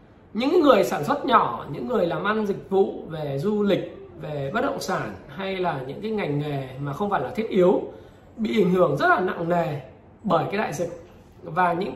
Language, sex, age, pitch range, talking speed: Vietnamese, male, 20-39, 160-225 Hz, 215 wpm